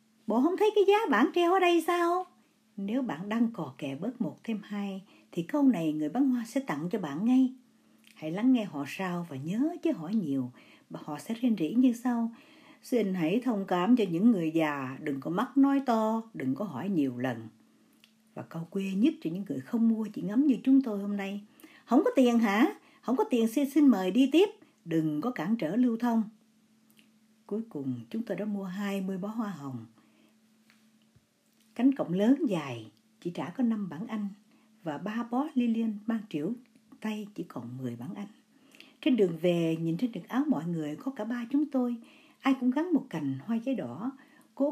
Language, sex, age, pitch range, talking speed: Vietnamese, female, 60-79, 195-260 Hz, 205 wpm